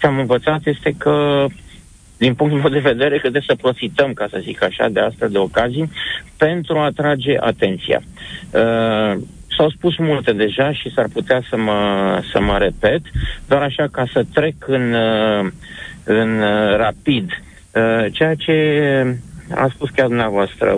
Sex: male